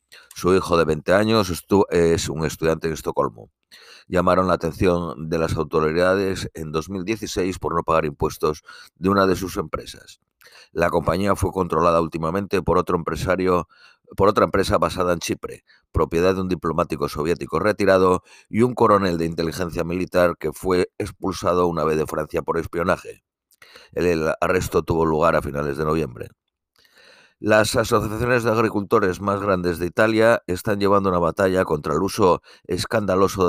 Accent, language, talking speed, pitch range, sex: Spanish, Spanish, 155 wpm, 85-100 Hz, male